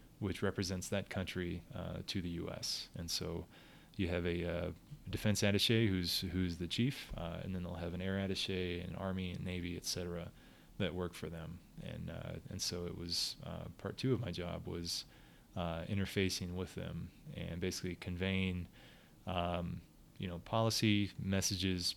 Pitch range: 90-100 Hz